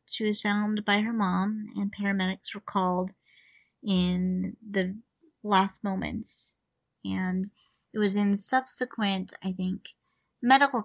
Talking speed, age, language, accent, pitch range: 120 wpm, 40-59, English, American, 185-215 Hz